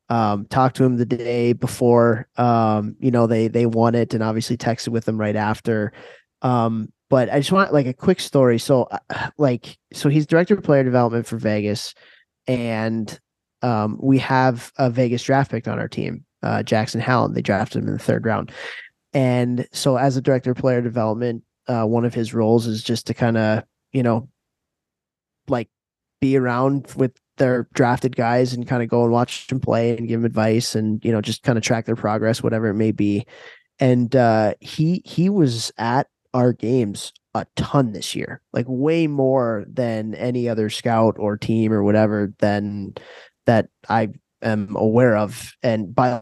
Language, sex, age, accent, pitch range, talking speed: English, male, 20-39, American, 110-130 Hz, 185 wpm